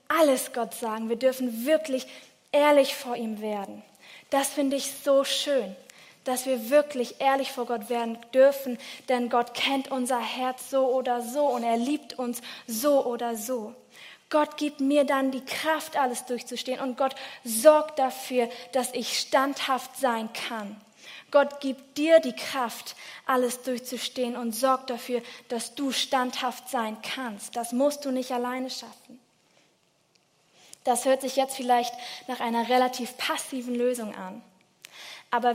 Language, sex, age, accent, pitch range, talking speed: German, female, 20-39, German, 235-275 Hz, 150 wpm